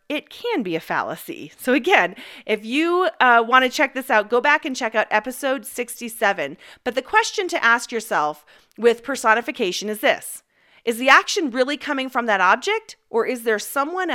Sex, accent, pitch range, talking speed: female, American, 210-285 Hz, 180 wpm